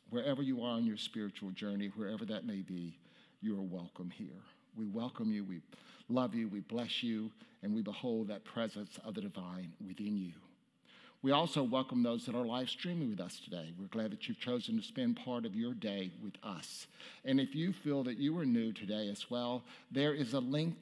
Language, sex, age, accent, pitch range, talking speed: English, male, 60-79, American, 115-180 Hz, 210 wpm